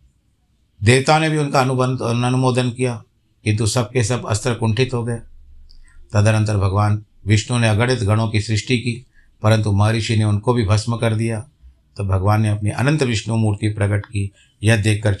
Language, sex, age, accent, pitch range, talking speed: Hindi, male, 60-79, native, 105-130 Hz, 175 wpm